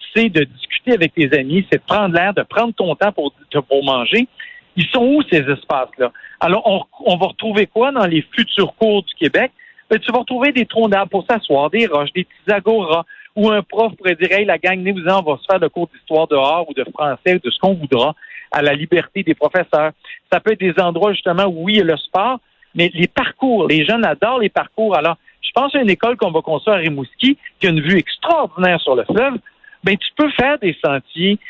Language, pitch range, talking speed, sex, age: French, 165-225 Hz, 240 wpm, male, 50-69